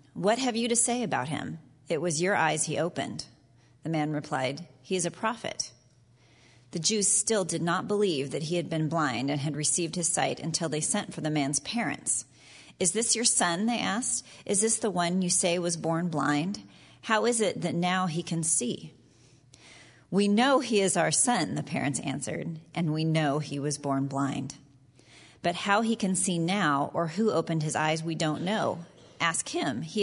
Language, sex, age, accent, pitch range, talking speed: English, female, 40-59, American, 145-195 Hz, 200 wpm